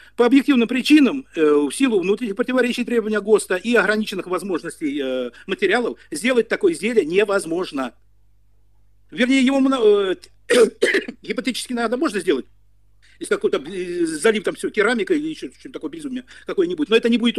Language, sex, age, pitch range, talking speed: Russian, male, 50-69, 185-285 Hz, 130 wpm